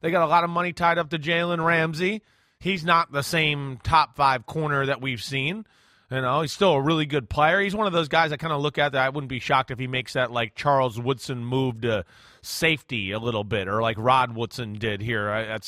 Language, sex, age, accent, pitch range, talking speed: English, male, 30-49, American, 140-195 Hz, 245 wpm